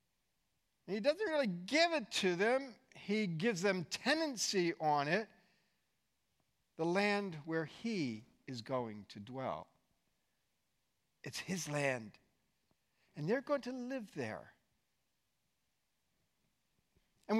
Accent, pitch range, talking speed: American, 165-245 Hz, 105 wpm